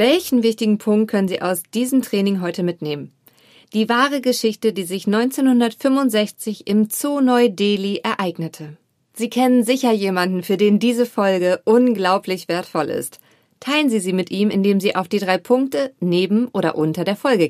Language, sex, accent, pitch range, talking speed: German, female, German, 185-240 Hz, 165 wpm